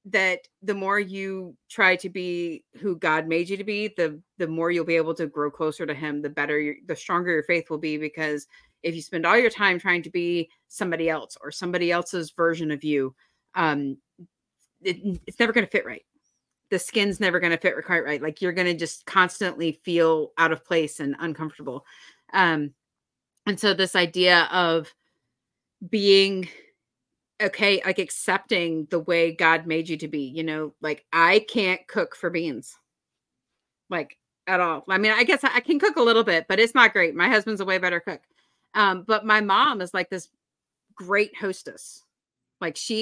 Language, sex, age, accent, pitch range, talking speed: English, female, 30-49, American, 160-195 Hz, 190 wpm